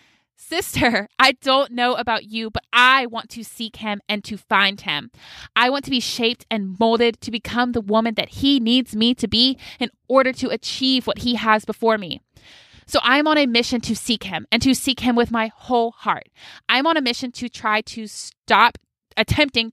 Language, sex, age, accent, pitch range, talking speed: English, female, 20-39, American, 220-255 Hz, 205 wpm